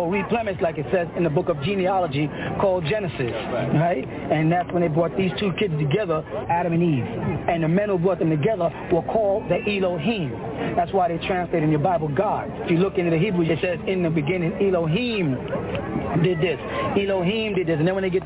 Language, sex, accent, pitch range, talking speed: English, male, American, 165-195 Hz, 215 wpm